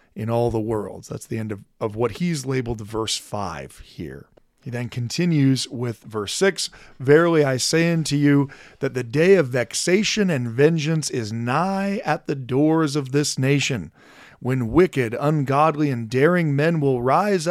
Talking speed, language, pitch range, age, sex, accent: 170 wpm, English, 125-160 Hz, 40-59, male, American